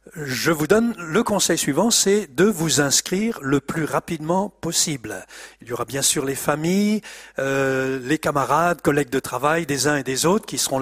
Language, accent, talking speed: French, French, 190 wpm